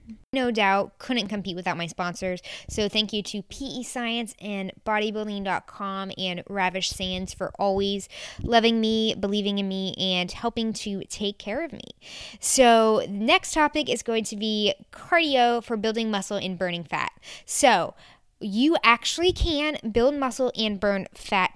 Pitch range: 195-240 Hz